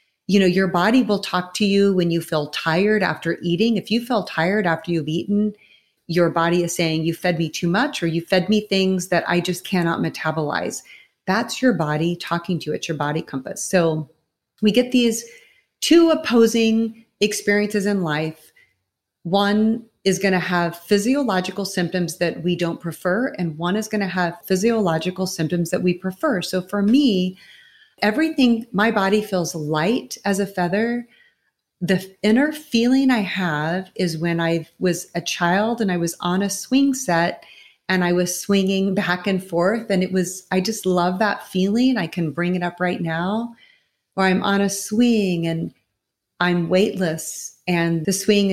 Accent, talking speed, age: American, 175 wpm, 30-49